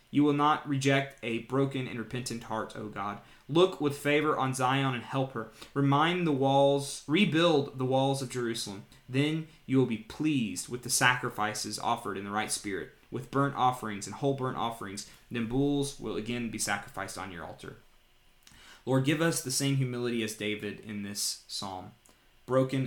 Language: English